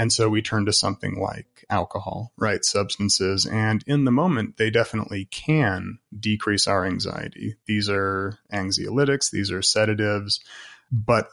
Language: English